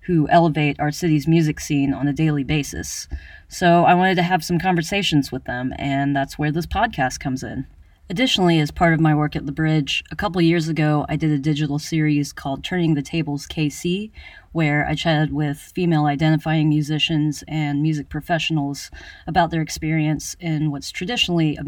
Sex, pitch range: female, 140-165 Hz